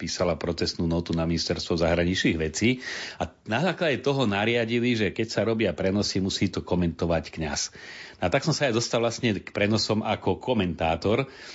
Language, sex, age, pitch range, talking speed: Slovak, male, 40-59, 85-110 Hz, 165 wpm